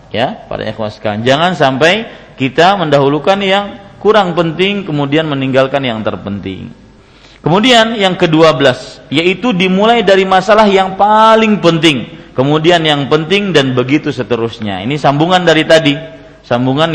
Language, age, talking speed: Malay, 40-59, 125 wpm